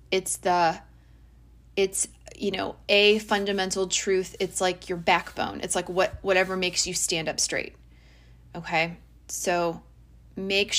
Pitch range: 170-210 Hz